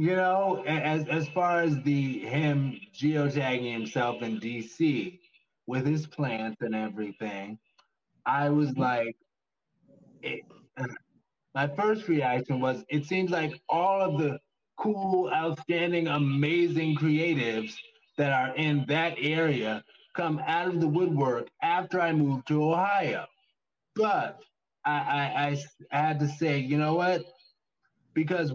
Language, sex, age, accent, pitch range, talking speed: English, male, 20-39, American, 135-170 Hz, 130 wpm